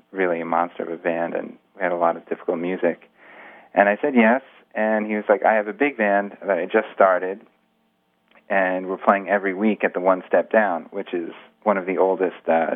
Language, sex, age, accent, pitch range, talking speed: English, male, 30-49, American, 85-100 Hz, 225 wpm